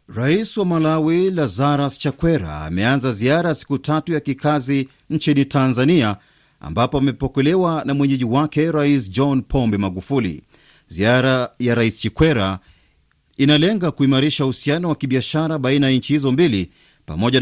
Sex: male